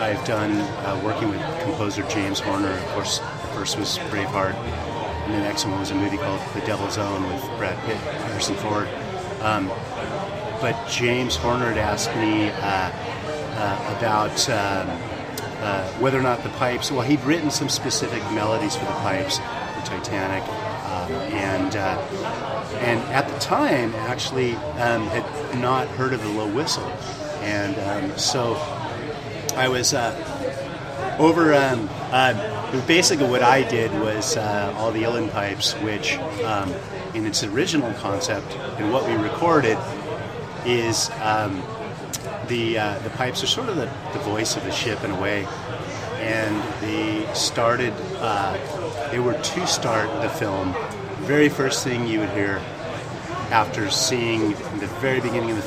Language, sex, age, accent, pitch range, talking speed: English, male, 30-49, American, 105-135 Hz, 155 wpm